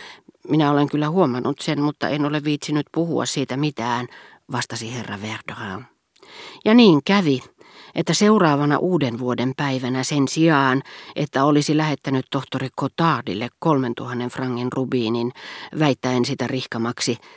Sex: female